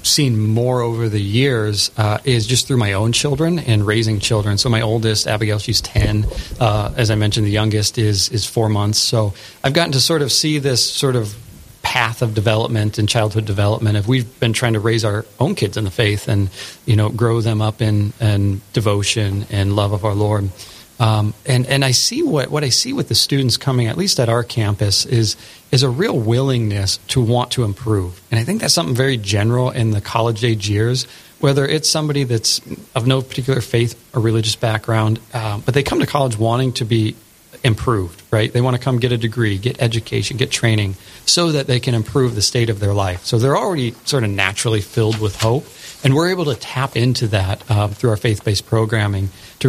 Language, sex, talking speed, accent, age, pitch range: English, male, 215 wpm, American, 30-49, 105-125 Hz